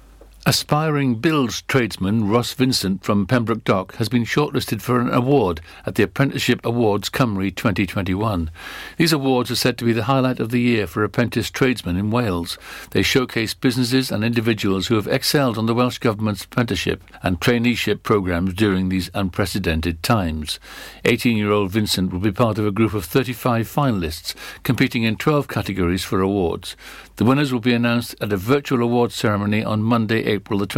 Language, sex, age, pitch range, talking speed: English, male, 60-79, 105-130 Hz, 170 wpm